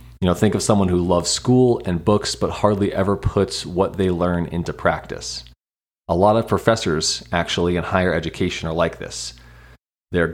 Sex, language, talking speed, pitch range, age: male, English, 180 wpm, 85-100 Hz, 30-49